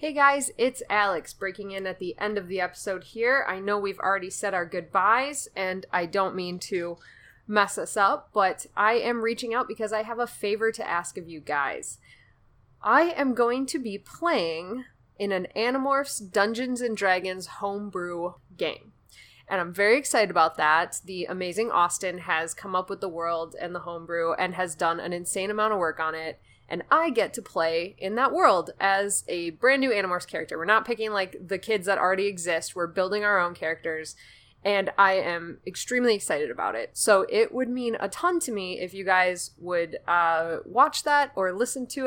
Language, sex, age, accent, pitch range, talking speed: English, female, 20-39, American, 175-230 Hz, 195 wpm